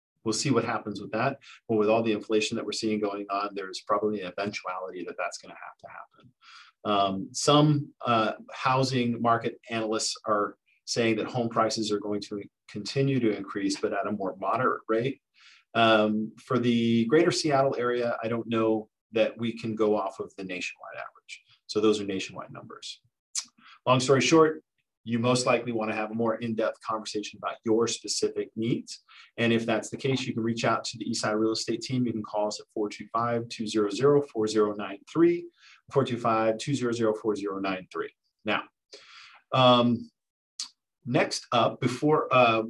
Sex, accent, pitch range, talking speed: male, American, 105-125 Hz, 160 wpm